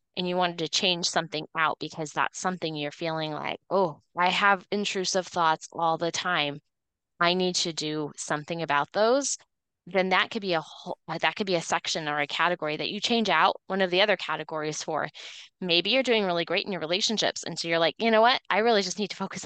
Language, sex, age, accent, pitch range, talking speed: English, female, 20-39, American, 170-215 Hz, 225 wpm